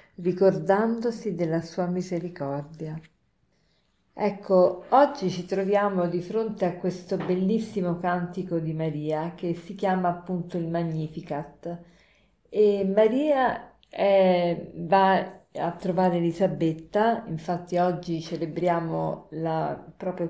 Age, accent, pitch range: 50-69, native, 165-200 Hz